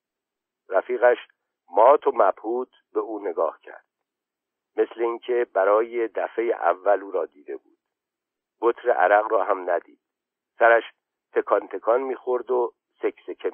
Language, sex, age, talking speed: Persian, male, 50-69, 125 wpm